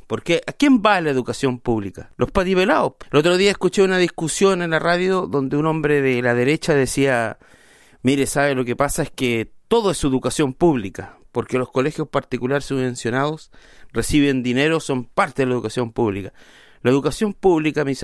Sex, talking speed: male, 175 wpm